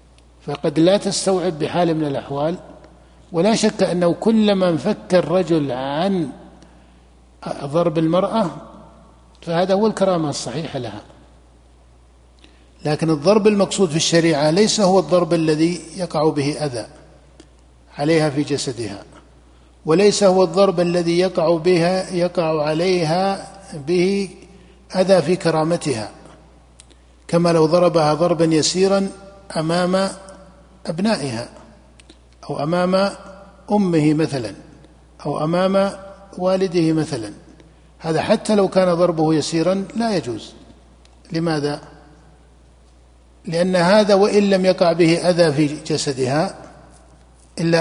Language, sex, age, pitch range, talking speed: Arabic, male, 60-79, 145-185 Hz, 100 wpm